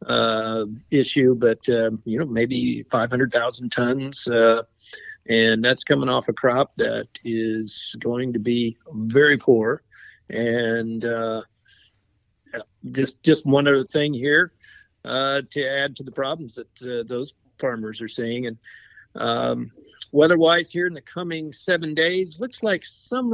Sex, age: male, 50-69